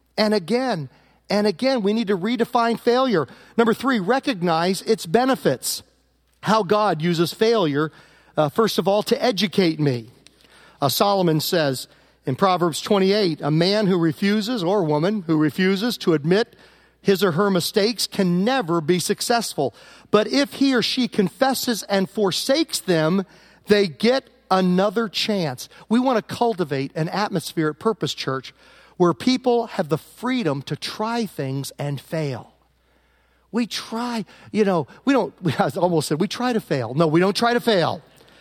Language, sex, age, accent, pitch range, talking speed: English, male, 40-59, American, 175-230 Hz, 160 wpm